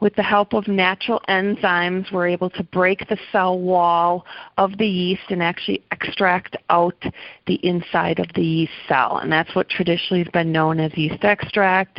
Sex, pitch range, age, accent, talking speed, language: female, 165-200 Hz, 40-59, American, 180 wpm, English